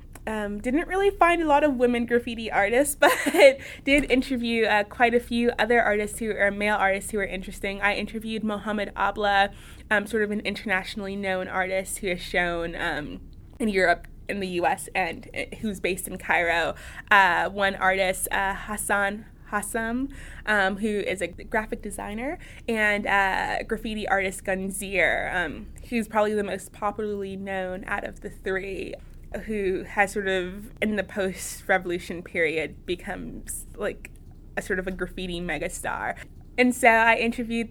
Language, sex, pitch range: English, female, 190-220 Hz